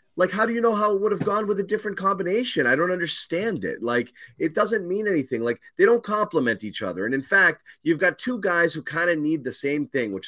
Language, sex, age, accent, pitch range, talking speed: English, male, 30-49, American, 135-185 Hz, 255 wpm